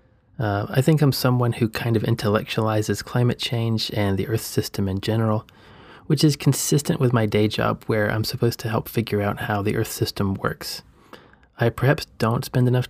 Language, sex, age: English, male, 30-49